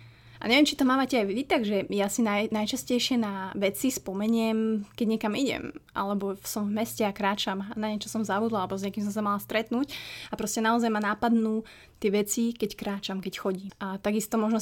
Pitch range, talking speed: 195-225 Hz, 205 wpm